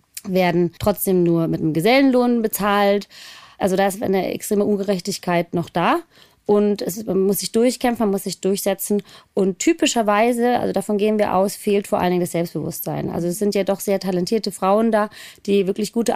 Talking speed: 190 wpm